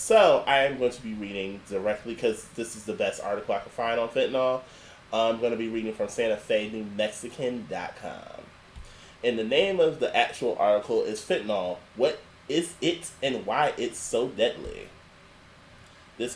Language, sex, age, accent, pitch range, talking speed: English, male, 20-39, American, 110-140 Hz, 160 wpm